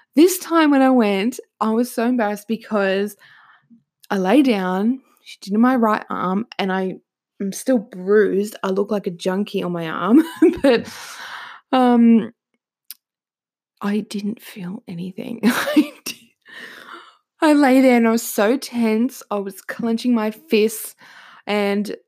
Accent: Australian